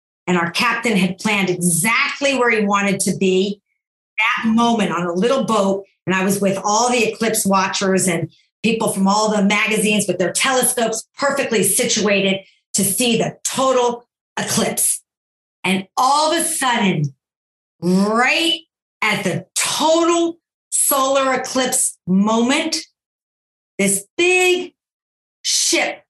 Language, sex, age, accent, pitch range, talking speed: English, female, 50-69, American, 215-320 Hz, 130 wpm